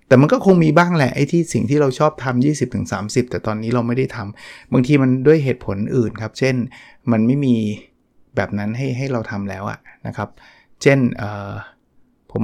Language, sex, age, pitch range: Thai, male, 20-39, 110-130 Hz